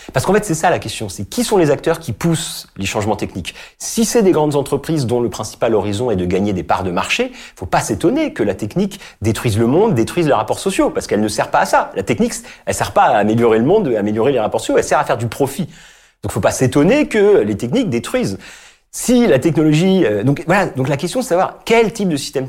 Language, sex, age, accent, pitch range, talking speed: French, male, 40-59, French, 110-165 Hz, 265 wpm